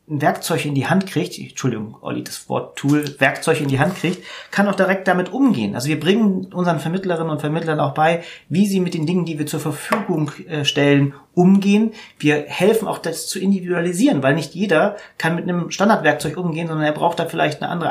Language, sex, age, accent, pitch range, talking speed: German, male, 30-49, German, 140-180 Hz, 210 wpm